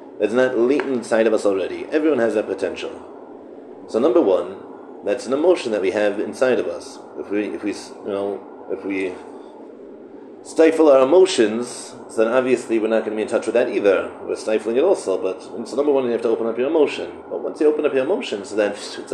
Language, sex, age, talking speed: English, male, 30-49, 225 wpm